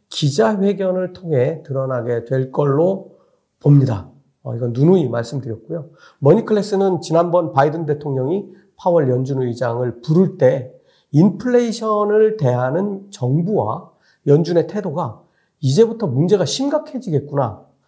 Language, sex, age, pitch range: Korean, male, 40-59, 130-190 Hz